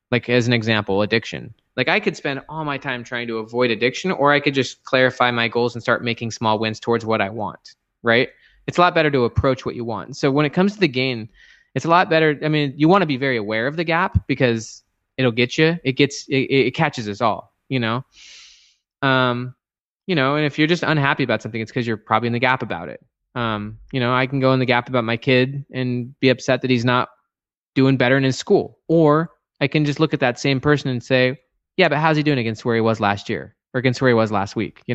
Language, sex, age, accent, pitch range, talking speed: English, male, 20-39, American, 115-140 Hz, 255 wpm